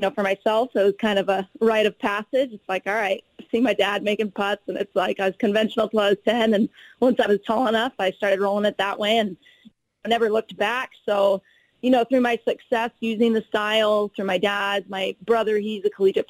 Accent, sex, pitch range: American, female, 195-225 Hz